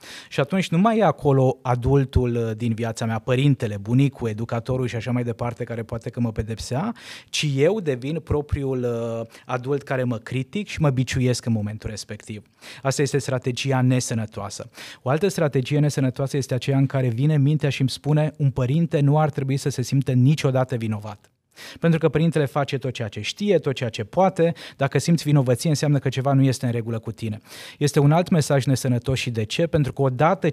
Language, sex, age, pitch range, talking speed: Romanian, male, 20-39, 120-150 Hz, 195 wpm